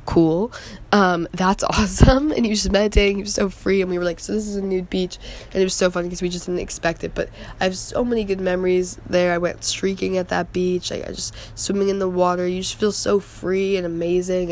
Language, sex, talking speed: English, female, 255 wpm